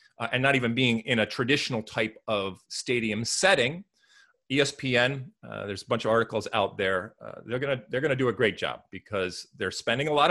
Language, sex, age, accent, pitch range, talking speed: English, male, 30-49, American, 110-140 Hz, 210 wpm